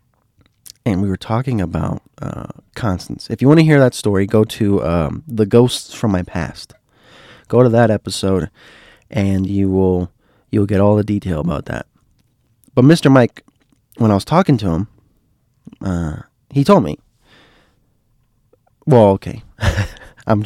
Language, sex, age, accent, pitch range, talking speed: English, male, 20-39, American, 95-120 Hz, 155 wpm